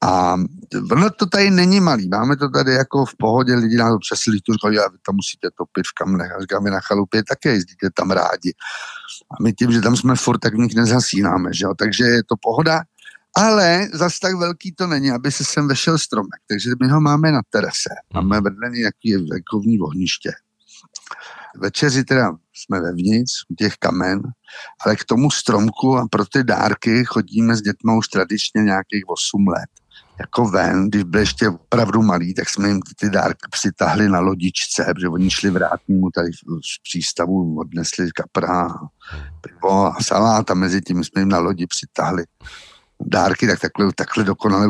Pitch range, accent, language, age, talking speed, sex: 95-130 Hz, native, Czech, 50-69, 180 wpm, male